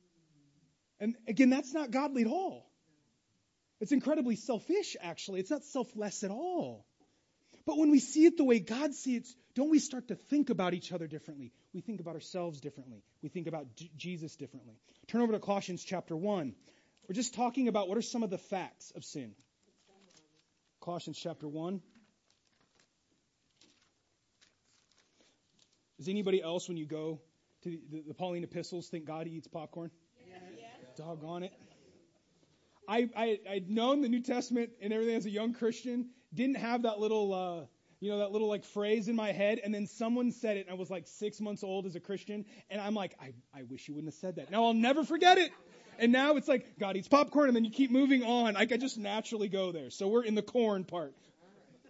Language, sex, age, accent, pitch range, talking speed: English, male, 30-49, American, 175-235 Hz, 190 wpm